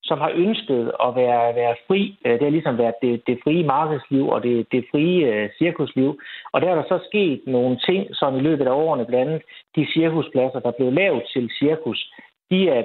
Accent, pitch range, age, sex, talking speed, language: native, 125-165 Hz, 60-79, male, 210 wpm, Danish